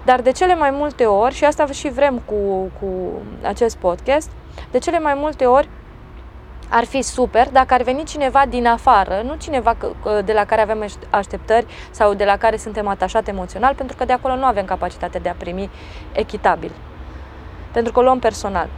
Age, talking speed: 20-39, 185 wpm